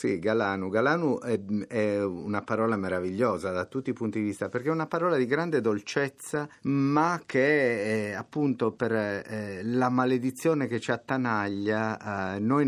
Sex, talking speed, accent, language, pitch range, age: male, 140 wpm, native, Italian, 100-125 Hz, 50-69